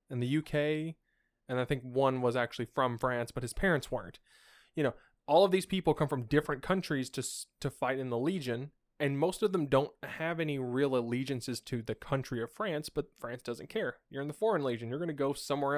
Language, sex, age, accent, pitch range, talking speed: English, male, 20-39, American, 120-145 Hz, 220 wpm